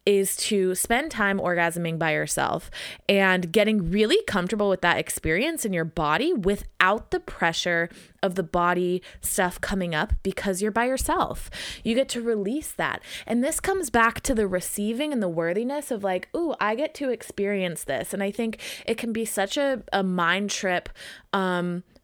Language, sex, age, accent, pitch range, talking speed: English, female, 20-39, American, 185-235 Hz, 175 wpm